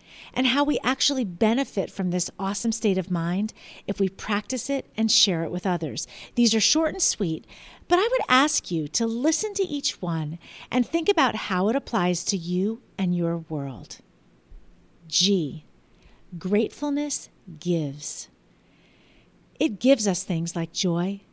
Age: 50-69